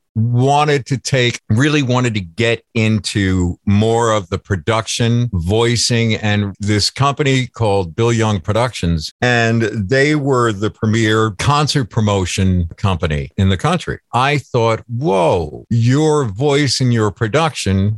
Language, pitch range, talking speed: English, 105-135 Hz, 130 wpm